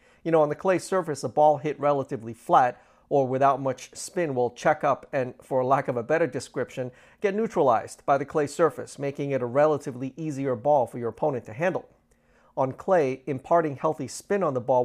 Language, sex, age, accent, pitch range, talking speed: English, male, 40-59, American, 125-155 Hz, 200 wpm